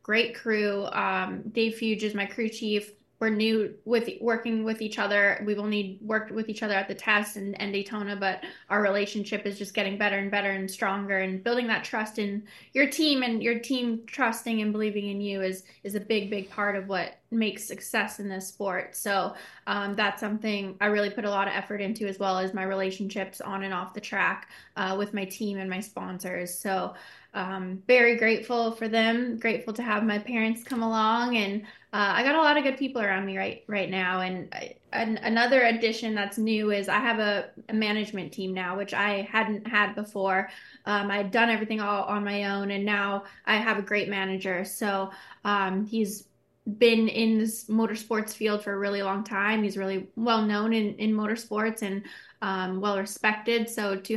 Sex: female